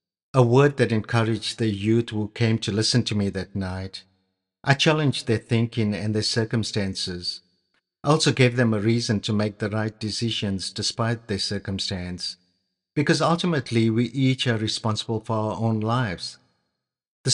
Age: 50-69